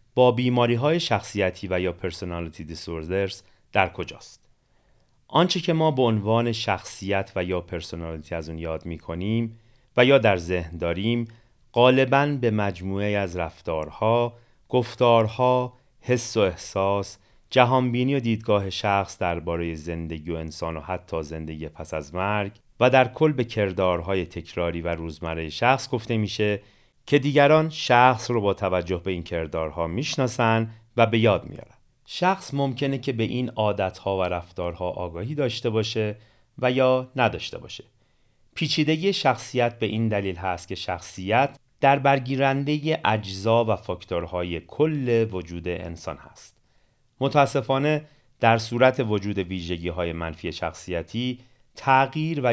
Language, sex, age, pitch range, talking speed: Persian, male, 30-49, 90-125 Hz, 135 wpm